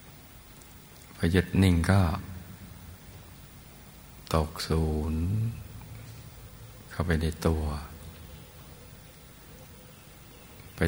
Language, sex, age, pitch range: Thai, male, 60-79, 80-95 Hz